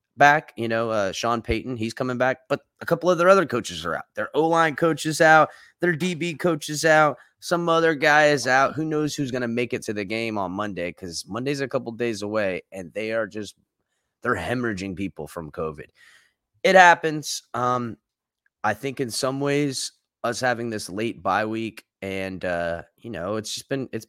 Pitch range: 105-155 Hz